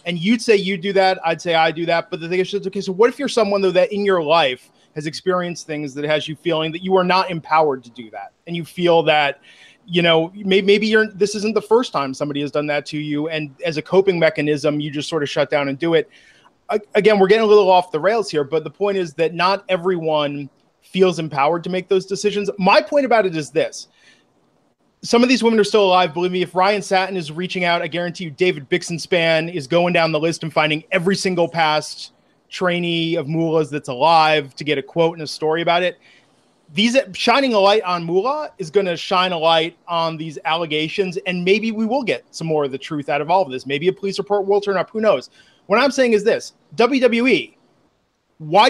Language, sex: English, male